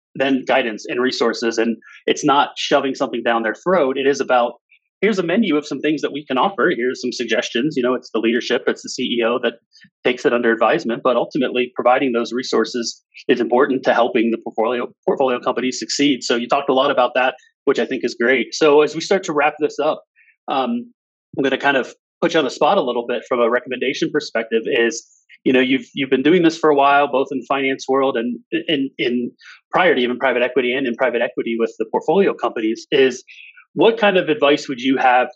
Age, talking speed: 30-49, 225 wpm